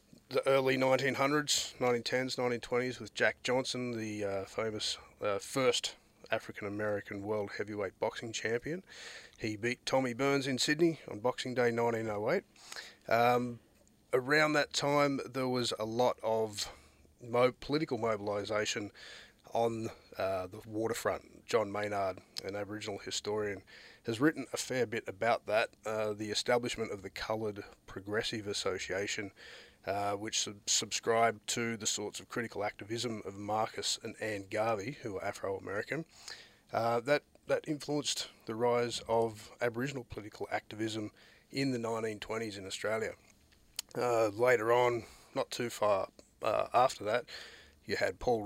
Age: 30-49